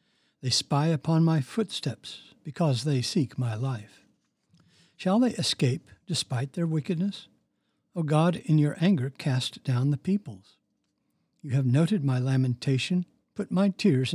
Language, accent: English, American